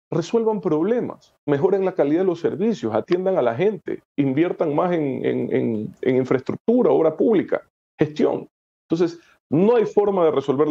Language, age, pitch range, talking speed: English, 40-59, 135-200 Hz, 155 wpm